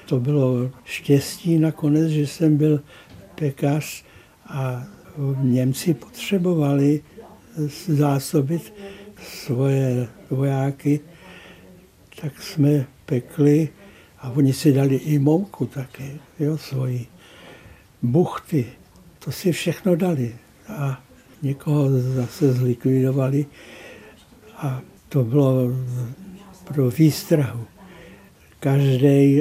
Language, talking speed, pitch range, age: Czech, 85 wpm, 135-170 Hz, 60-79